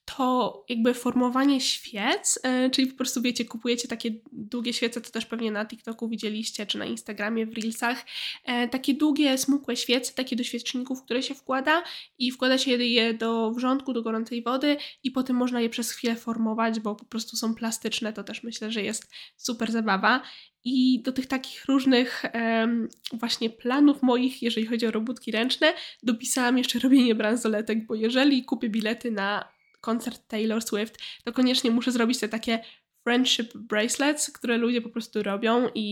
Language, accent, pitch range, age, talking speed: Polish, native, 225-255 Hz, 10-29, 165 wpm